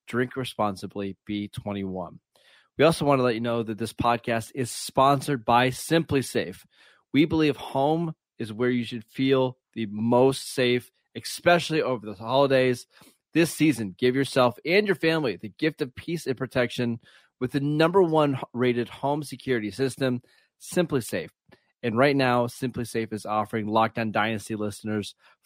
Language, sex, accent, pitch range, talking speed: English, male, American, 115-140 Hz, 160 wpm